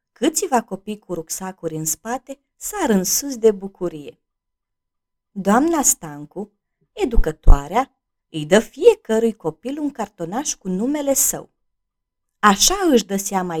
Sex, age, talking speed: female, 20-39, 120 wpm